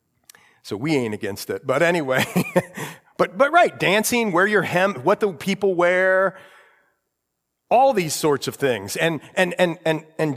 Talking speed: 160 wpm